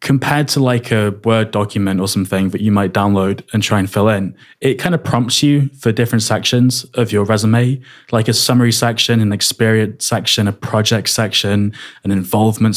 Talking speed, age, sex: 190 wpm, 20-39, male